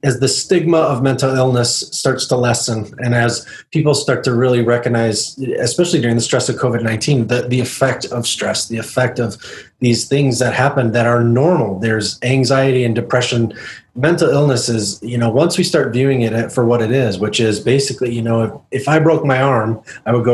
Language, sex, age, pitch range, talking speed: English, male, 30-49, 115-135 Hz, 200 wpm